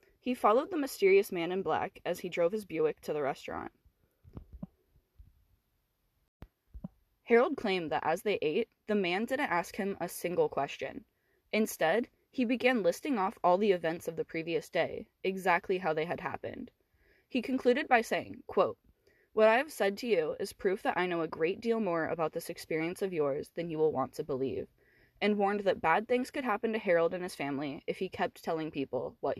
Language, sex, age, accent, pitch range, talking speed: English, female, 10-29, American, 170-245 Hz, 195 wpm